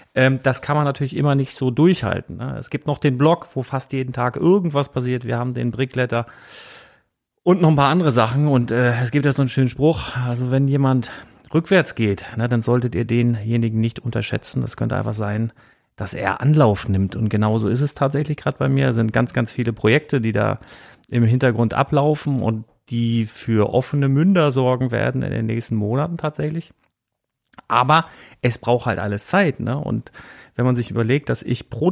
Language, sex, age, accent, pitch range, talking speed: German, male, 40-59, German, 115-145 Hz, 190 wpm